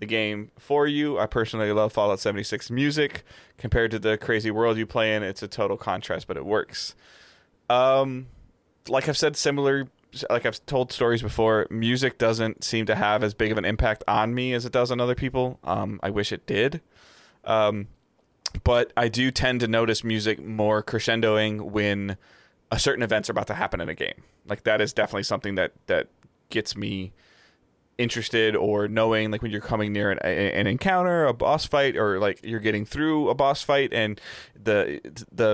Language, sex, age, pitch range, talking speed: English, male, 20-39, 105-125 Hz, 190 wpm